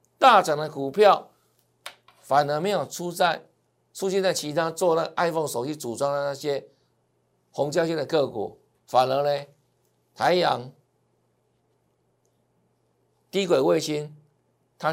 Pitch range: 120-180 Hz